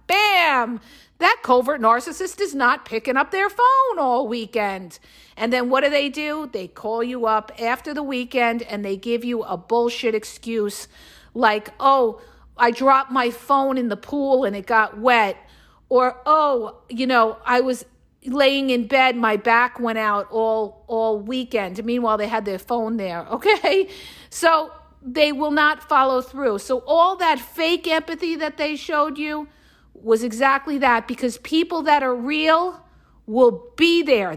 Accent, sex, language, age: American, female, English, 50-69